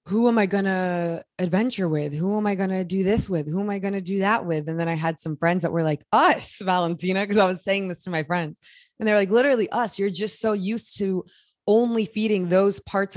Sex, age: female, 20-39